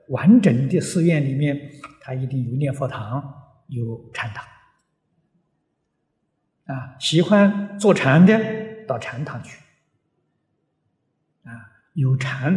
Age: 60-79